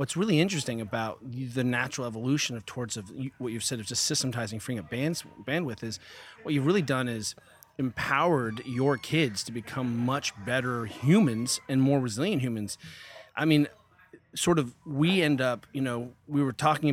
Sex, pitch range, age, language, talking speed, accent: male, 120-145 Hz, 30-49, English, 175 wpm, American